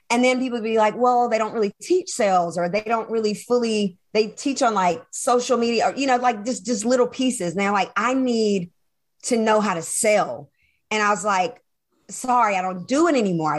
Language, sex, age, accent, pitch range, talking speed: English, female, 40-59, American, 185-240 Hz, 225 wpm